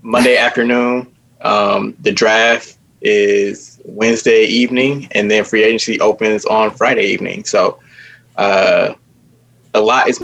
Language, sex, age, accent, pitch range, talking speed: English, male, 20-39, American, 110-135 Hz, 125 wpm